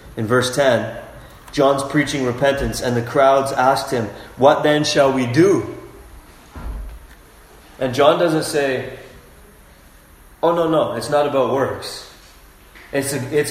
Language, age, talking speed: English, 30-49, 125 wpm